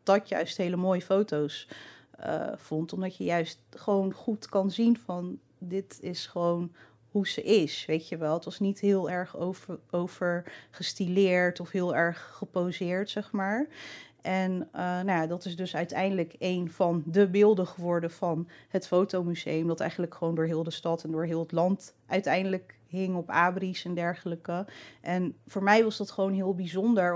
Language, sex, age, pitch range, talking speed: Dutch, female, 30-49, 170-195 Hz, 175 wpm